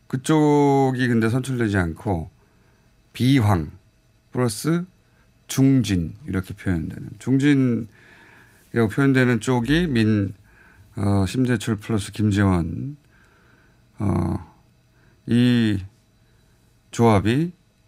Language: Korean